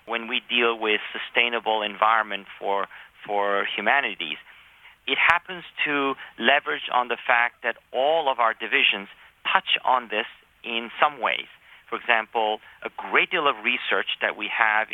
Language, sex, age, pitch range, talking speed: English, male, 40-59, 110-135 Hz, 150 wpm